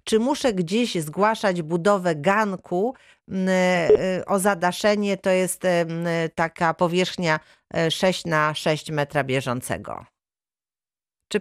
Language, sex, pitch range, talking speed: Polish, female, 170-195 Hz, 95 wpm